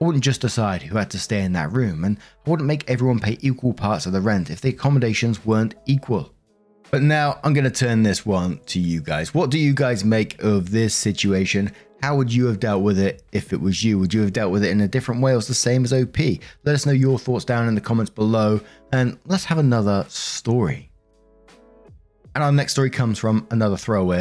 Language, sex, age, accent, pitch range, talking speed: English, male, 20-39, British, 105-135 Hz, 235 wpm